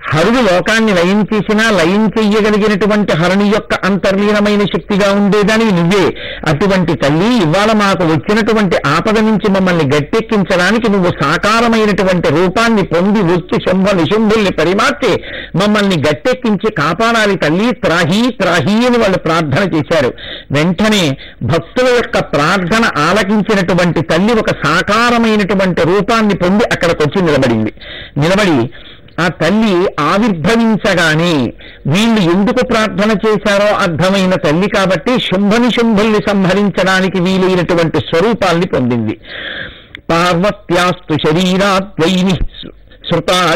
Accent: native